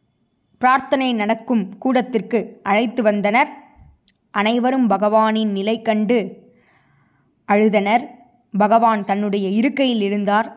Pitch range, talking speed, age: 190-235 Hz, 80 wpm, 20-39